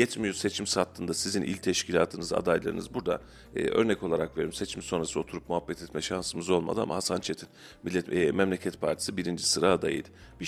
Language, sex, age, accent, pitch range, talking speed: Turkish, male, 40-59, native, 90-115 Hz, 170 wpm